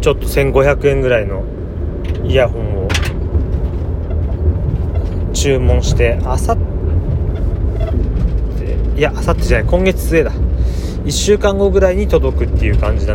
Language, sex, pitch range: Japanese, male, 85-115 Hz